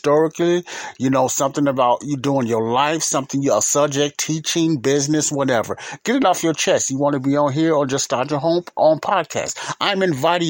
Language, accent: English, American